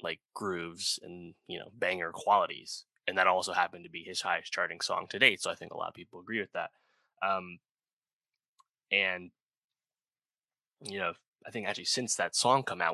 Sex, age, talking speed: male, 20-39, 190 wpm